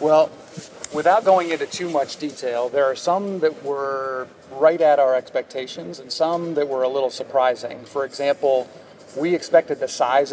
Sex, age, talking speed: male, 40-59, 170 wpm